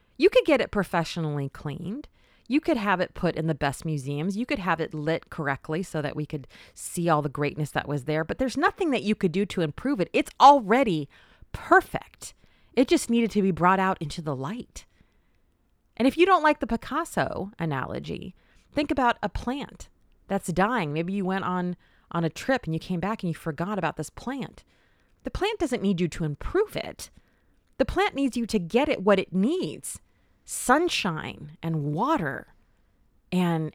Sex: female